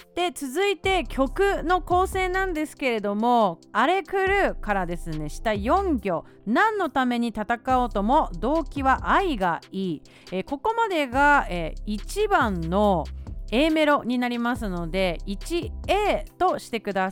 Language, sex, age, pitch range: Japanese, female, 40-59, 205-330 Hz